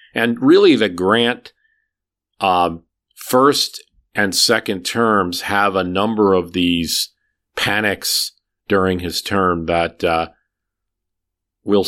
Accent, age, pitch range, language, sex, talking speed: American, 40-59, 85-105 Hz, English, male, 105 wpm